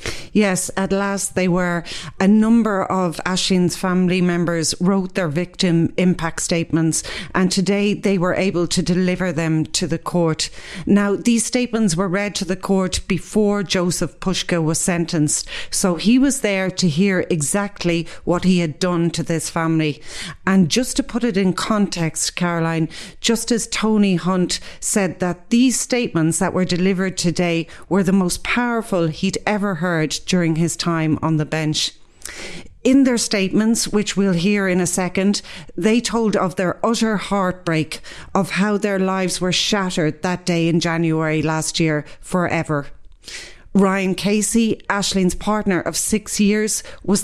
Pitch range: 170-205 Hz